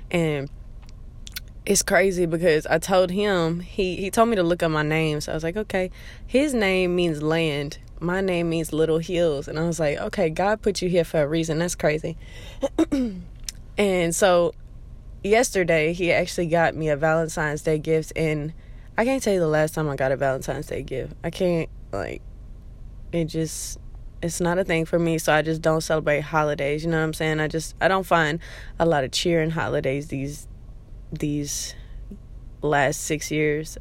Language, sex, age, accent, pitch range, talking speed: English, female, 20-39, American, 150-175 Hz, 190 wpm